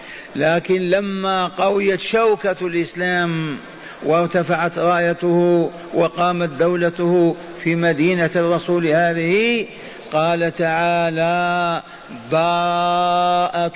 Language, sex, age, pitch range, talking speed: Arabic, male, 50-69, 170-210 Hz, 70 wpm